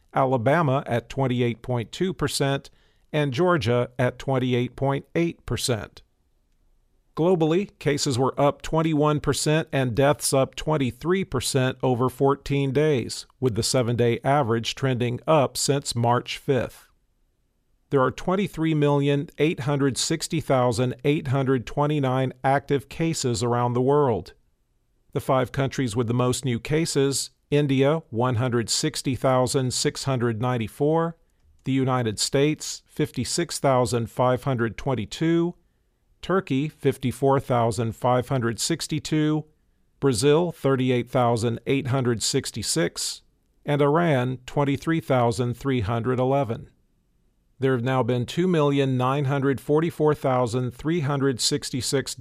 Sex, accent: male, American